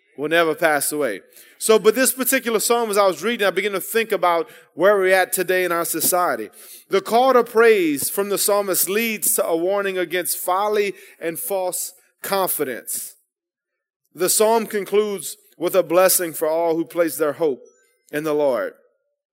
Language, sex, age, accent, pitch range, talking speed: English, male, 30-49, American, 165-215 Hz, 175 wpm